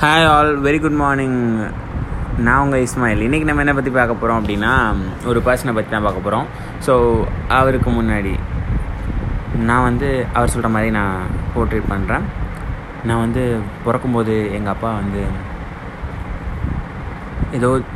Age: 20-39